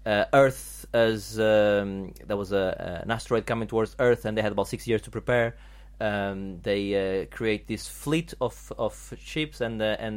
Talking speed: 190 wpm